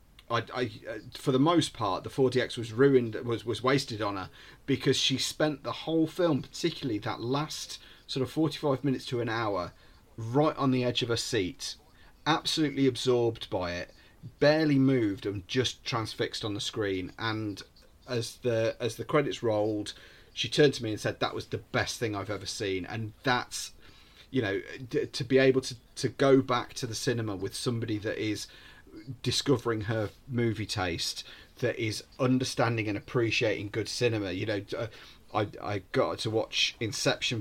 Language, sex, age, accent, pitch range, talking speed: English, male, 30-49, British, 105-130 Hz, 175 wpm